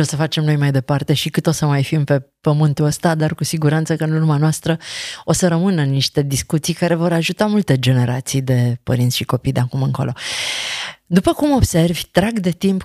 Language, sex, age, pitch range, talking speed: Romanian, female, 30-49, 145-190 Hz, 210 wpm